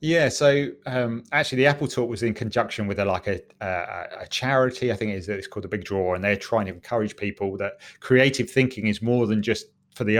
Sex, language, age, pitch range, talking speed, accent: male, English, 30-49, 105-130 Hz, 225 wpm, British